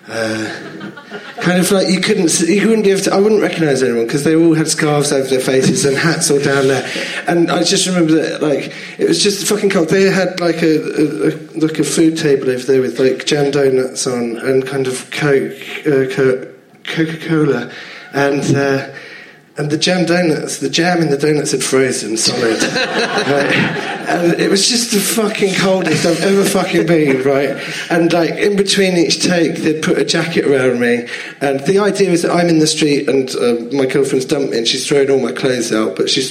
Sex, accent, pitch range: male, British, 135-170 Hz